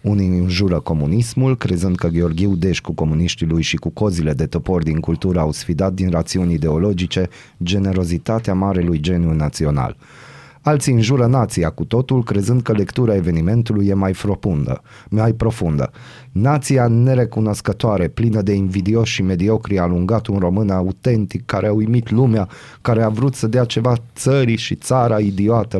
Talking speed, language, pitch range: 150 wpm, Romanian, 90-120 Hz